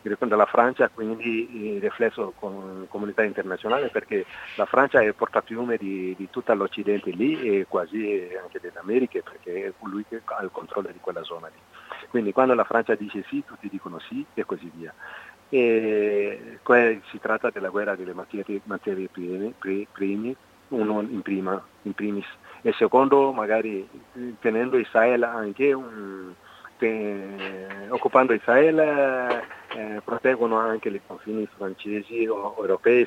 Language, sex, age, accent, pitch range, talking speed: Italian, male, 40-59, native, 100-130 Hz, 145 wpm